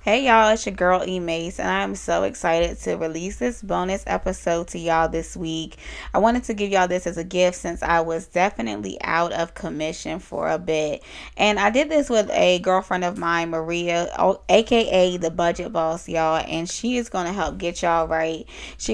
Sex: female